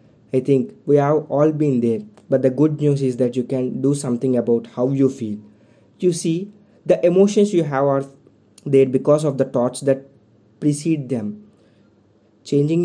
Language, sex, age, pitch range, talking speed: English, male, 20-39, 120-145 Hz, 175 wpm